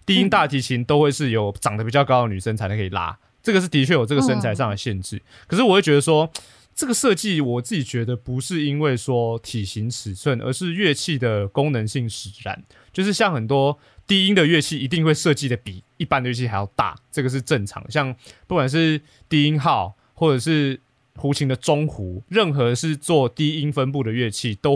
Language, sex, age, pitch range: Chinese, male, 20-39, 115-150 Hz